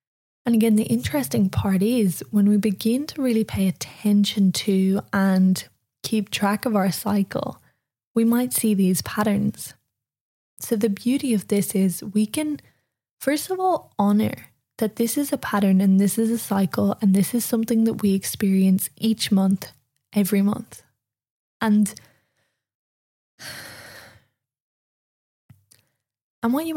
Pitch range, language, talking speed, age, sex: 175-215 Hz, English, 140 wpm, 10-29, female